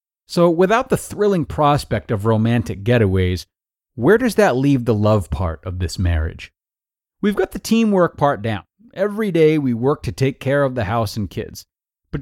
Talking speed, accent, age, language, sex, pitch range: 180 wpm, American, 30-49, English, male, 105-150 Hz